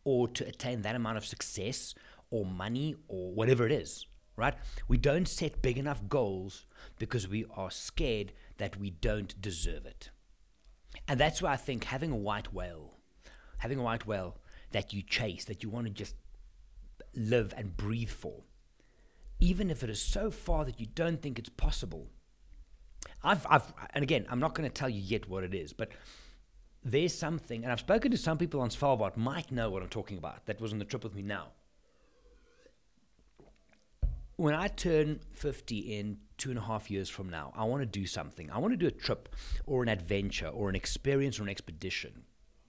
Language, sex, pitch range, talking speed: English, male, 95-130 Hz, 190 wpm